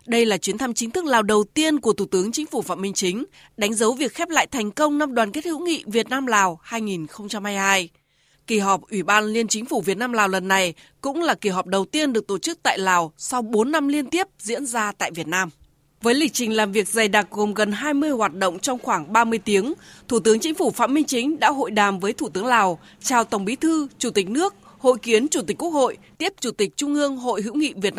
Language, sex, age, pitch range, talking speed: Vietnamese, female, 20-39, 195-275 Hz, 255 wpm